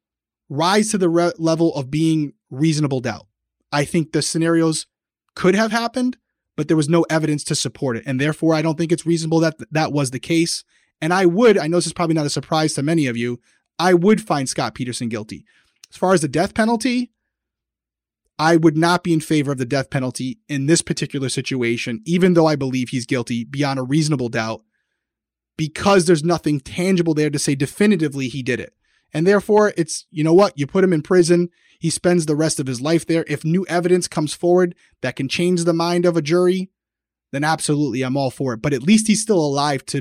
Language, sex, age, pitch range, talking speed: English, male, 30-49, 140-175 Hz, 215 wpm